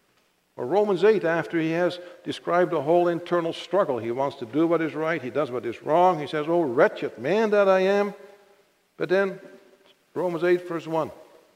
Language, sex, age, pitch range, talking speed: English, male, 60-79, 145-180 Hz, 190 wpm